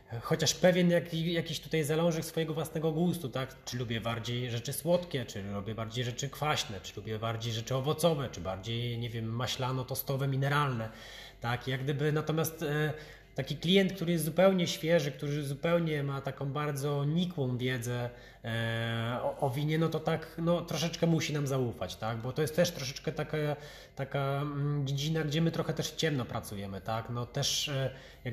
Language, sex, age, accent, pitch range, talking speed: Polish, male, 20-39, native, 120-150 Hz, 160 wpm